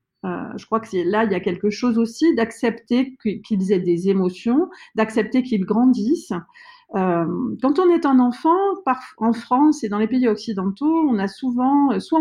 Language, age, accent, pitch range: French, 40-59, French, 195-265 Hz